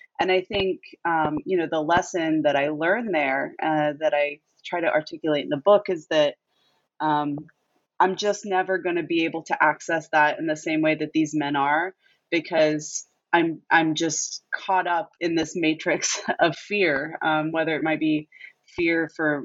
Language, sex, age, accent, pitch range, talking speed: English, female, 20-39, American, 145-170 Hz, 185 wpm